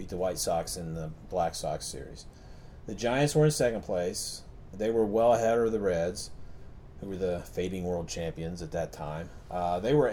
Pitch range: 90-120 Hz